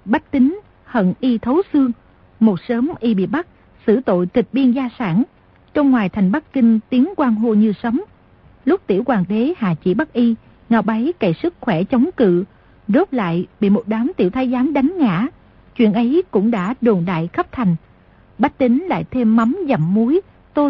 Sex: female